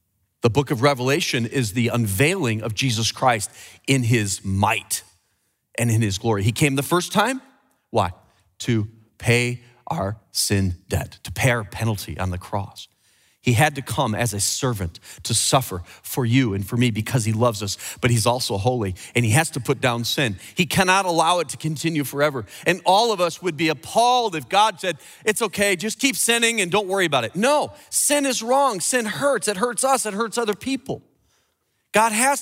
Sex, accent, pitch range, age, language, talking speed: male, American, 115-170 Hz, 40-59, English, 195 wpm